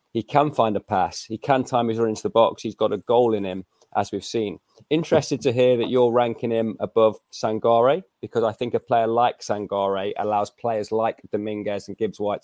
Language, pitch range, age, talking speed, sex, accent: English, 105-115 Hz, 30-49, 210 wpm, male, British